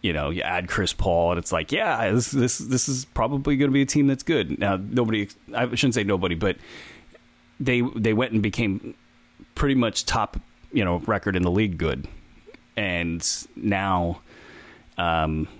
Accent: American